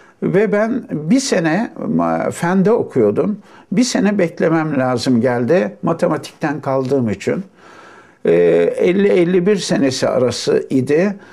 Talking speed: 95 wpm